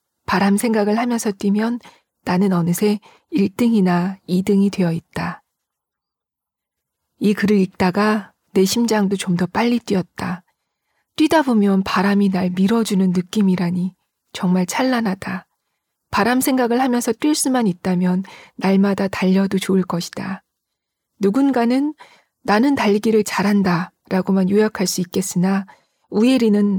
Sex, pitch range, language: female, 190-225 Hz, Korean